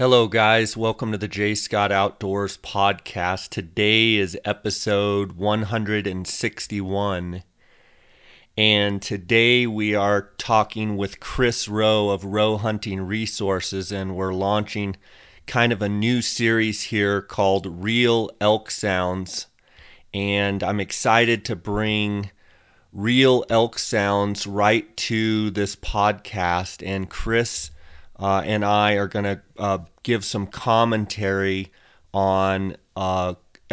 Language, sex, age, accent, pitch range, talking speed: English, male, 30-49, American, 95-110 Hz, 110 wpm